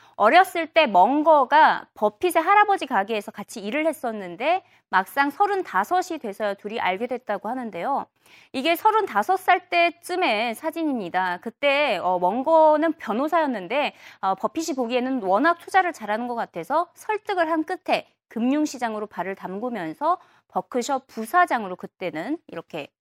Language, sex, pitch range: Korean, female, 215-345 Hz